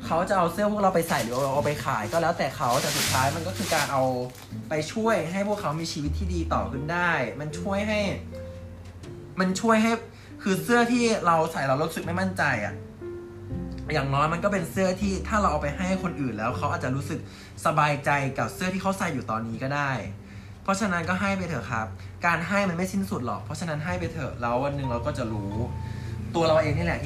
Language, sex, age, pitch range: Thai, male, 20-39, 110-175 Hz